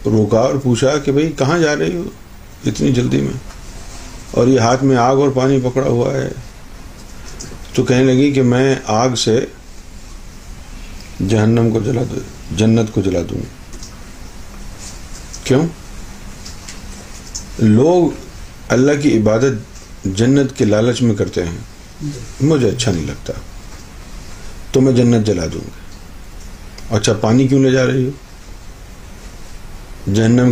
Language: Urdu